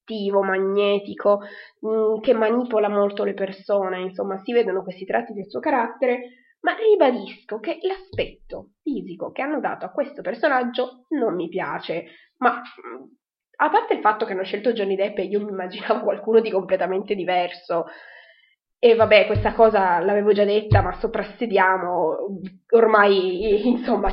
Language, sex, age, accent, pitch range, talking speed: Italian, female, 20-39, native, 190-230 Hz, 140 wpm